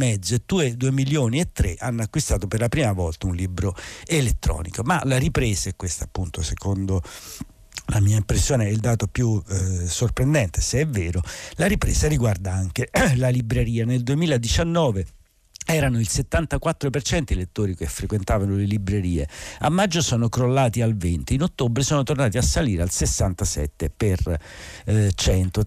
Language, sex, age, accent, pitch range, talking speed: Italian, male, 50-69, native, 95-125 Hz, 155 wpm